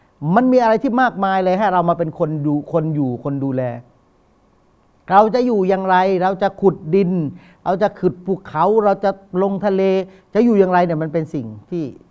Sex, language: male, Thai